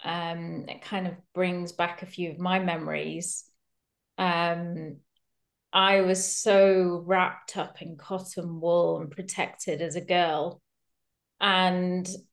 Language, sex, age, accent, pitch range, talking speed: English, female, 30-49, British, 180-225 Hz, 125 wpm